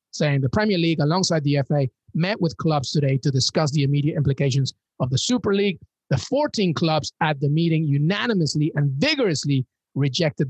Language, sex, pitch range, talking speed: English, male, 145-175 Hz, 170 wpm